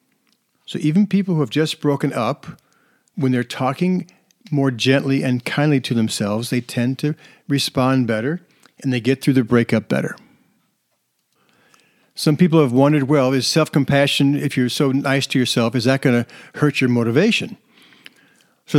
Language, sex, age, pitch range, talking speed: English, male, 50-69, 130-165 Hz, 160 wpm